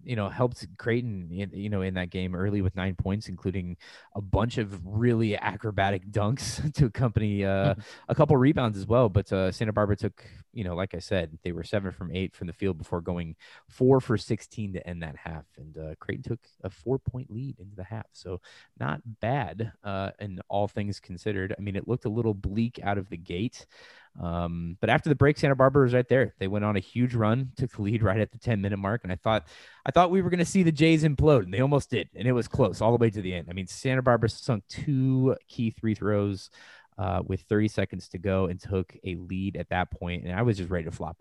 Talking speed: 240 wpm